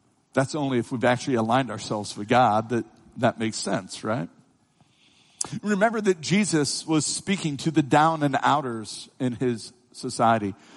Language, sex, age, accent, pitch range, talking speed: English, male, 50-69, American, 125-180 Hz, 150 wpm